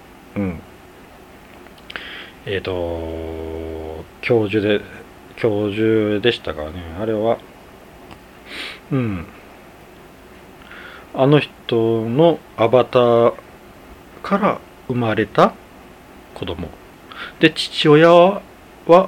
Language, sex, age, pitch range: Japanese, male, 40-59, 90-135 Hz